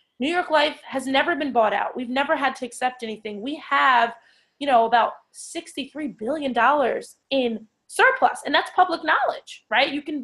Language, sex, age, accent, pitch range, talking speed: English, female, 20-39, American, 230-305 Hz, 180 wpm